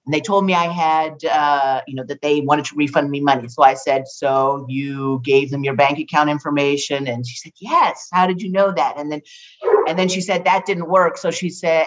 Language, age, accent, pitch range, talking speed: English, 50-69, American, 145-230 Hz, 245 wpm